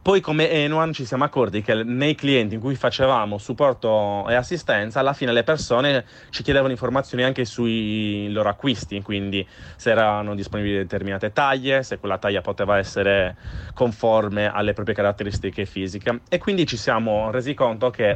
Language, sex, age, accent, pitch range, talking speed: Italian, male, 30-49, native, 105-135 Hz, 160 wpm